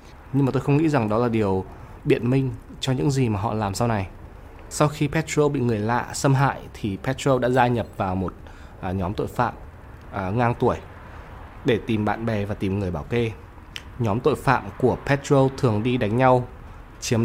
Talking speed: 210 wpm